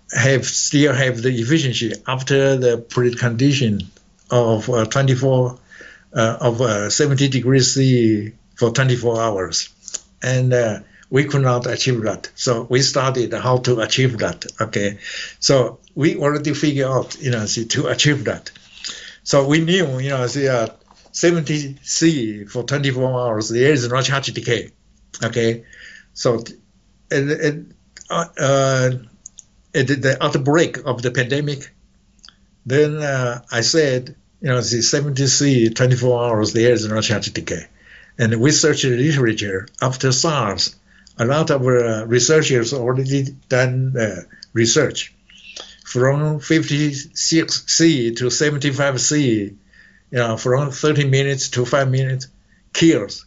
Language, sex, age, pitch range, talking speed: English, male, 60-79, 115-145 Hz, 135 wpm